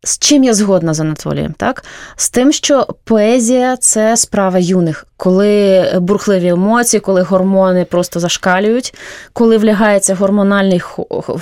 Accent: native